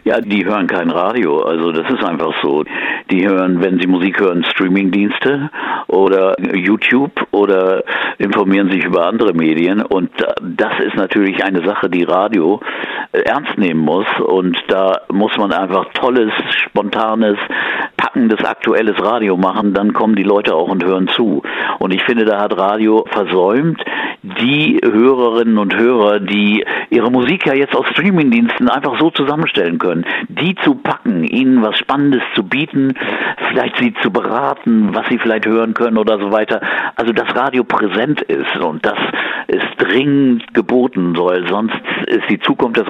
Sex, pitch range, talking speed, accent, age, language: male, 100-130 Hz, 160 wpm, German, 60-79, German